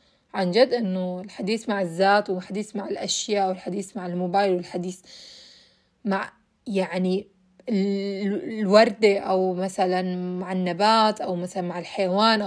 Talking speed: 115 wpm